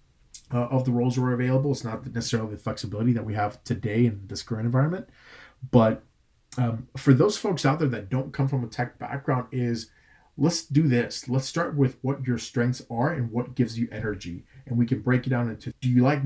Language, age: English, 30-49